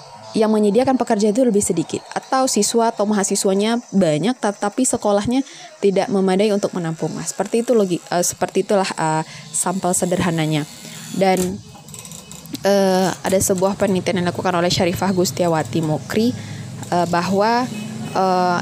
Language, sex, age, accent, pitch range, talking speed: Indonesian, female, 20-39, native, 185-225 Hz, 130 wpm